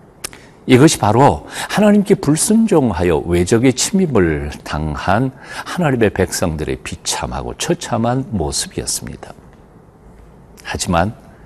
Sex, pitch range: male, 90-150 Hz